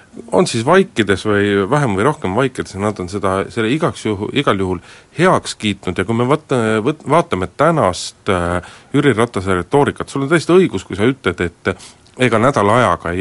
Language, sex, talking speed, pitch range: Finnish, male, 175 wpm, 95-135 Hz